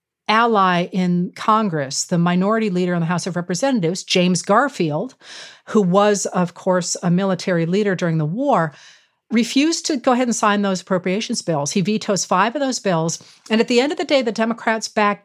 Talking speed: 190 wpm